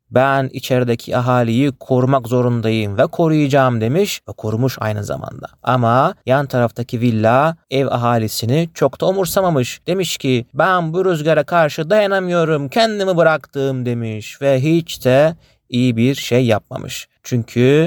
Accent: native